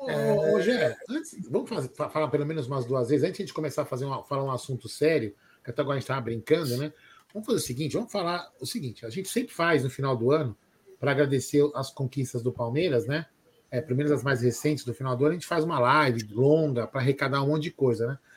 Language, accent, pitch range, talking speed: Portuguese, Brazilian, 140-195 Hz, 245 wpm